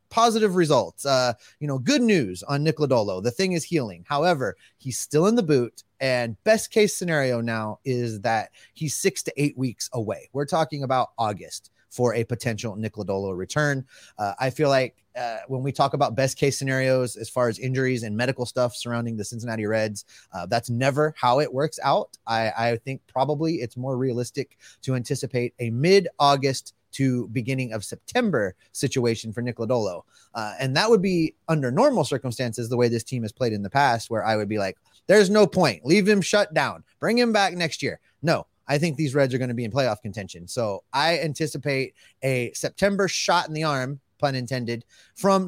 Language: English